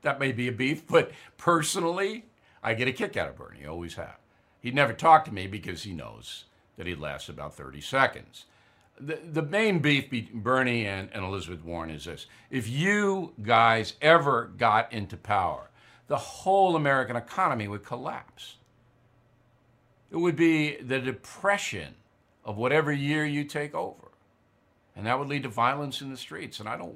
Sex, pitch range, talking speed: male, 115-165 Hz, 175 wpm